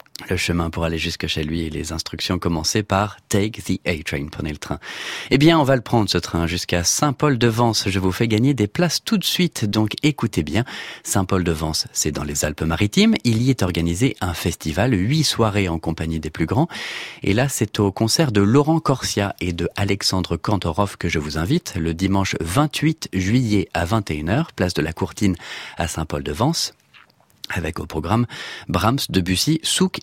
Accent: French